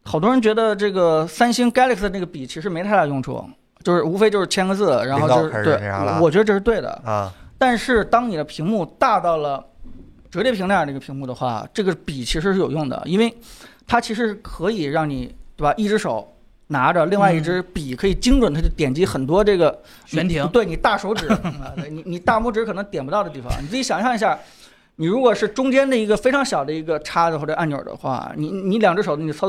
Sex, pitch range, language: male, 155-210 Hz, Chinese